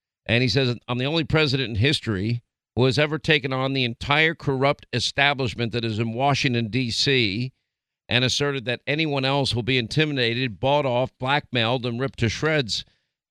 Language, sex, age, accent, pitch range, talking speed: English, male, 50-69, American, 130-160 Hz, 170 wpm